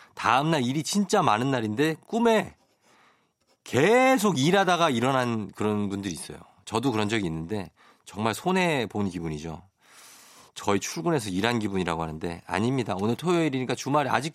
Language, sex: Korean, male